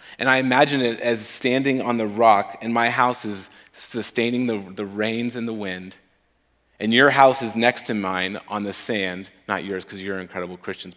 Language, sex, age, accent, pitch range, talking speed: English, male, 30-49, American, 105-130 Hz, 195 wpm